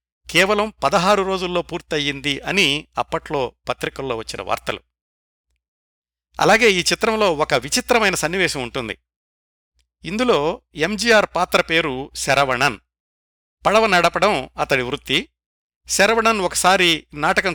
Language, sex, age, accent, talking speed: Telugu, male, 50-69, native, 95 wpm